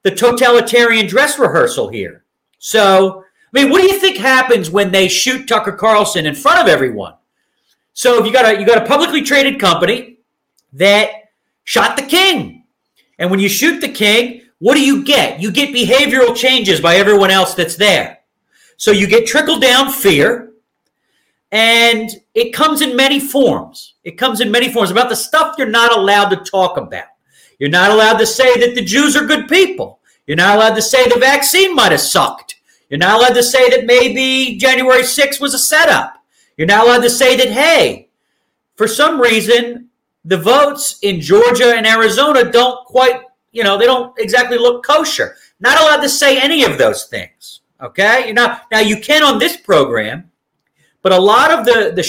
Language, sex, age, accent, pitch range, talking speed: English, male, 40-59, American, 215-270 Hz, 185 wpm